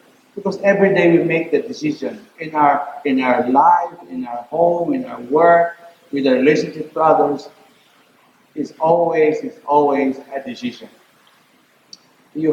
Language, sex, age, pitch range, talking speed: English, male, 50-69, 140-235 Hz, 145 wpm